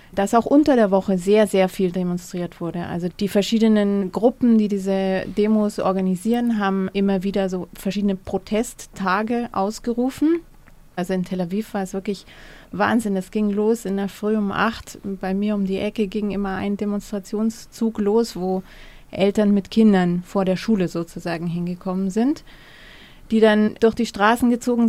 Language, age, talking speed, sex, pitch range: German, 30-49, 160 wpm, female, 195-215 Hz